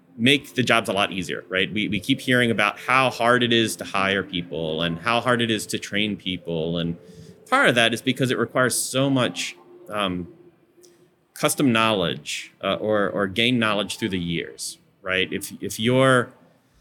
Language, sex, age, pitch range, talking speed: English, male, 30-49, 105-125 Hz, 185 wpm